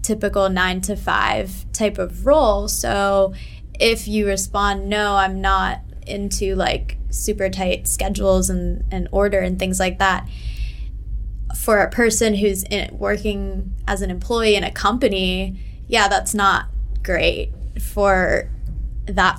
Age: 20-39